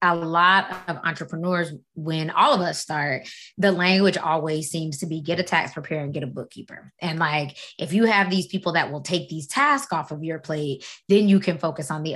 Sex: female